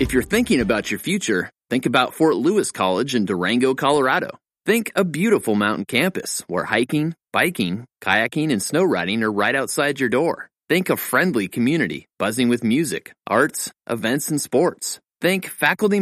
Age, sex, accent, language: 30-49, male, American, English